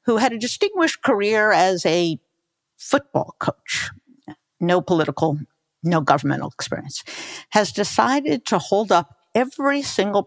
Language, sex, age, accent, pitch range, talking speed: English, female, 50-69, American, 155-215 Hz, 125 wpm